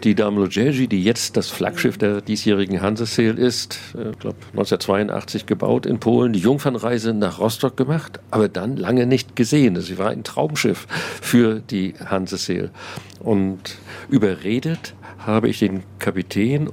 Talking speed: 145 wpm